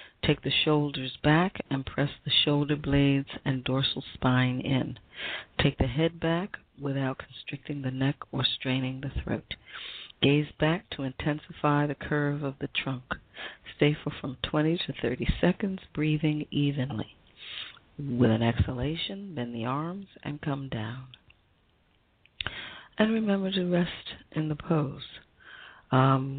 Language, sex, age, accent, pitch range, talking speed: English, female, 40-59, American, 125-150 Hz, 135 wpm